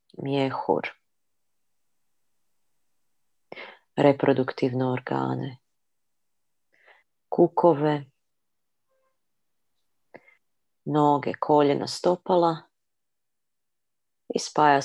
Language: Croatian